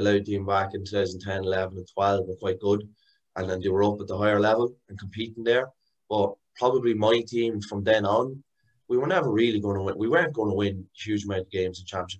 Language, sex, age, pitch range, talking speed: English, male, 20-39, 95-105 Hz, 240 wpm